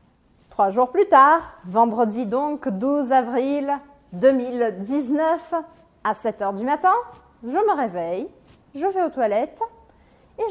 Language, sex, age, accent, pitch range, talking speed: Portuguese, female, 30-49, French, 225-305 Hz, 125 wpm